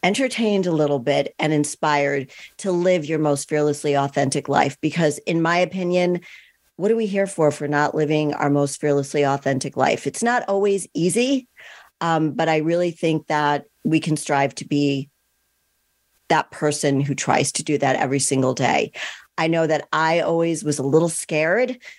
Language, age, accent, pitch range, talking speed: English, 50-69, American, 145-180 Hz, 175 wpm